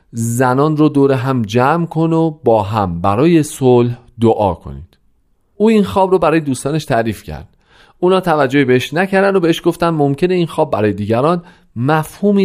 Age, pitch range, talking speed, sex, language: 40-59, 100-155 Hz, 165 wpm, male, Persian